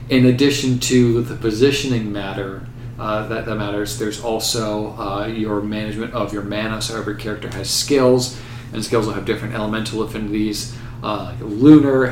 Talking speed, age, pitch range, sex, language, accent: 160 wpm, 40-59, 105-120 Hz, male, English, American